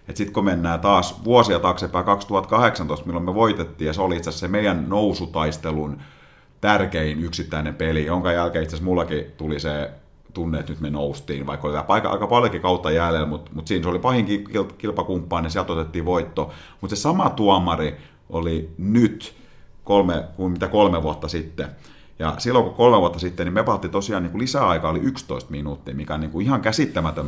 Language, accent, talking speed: Finnish, native, 185 wpm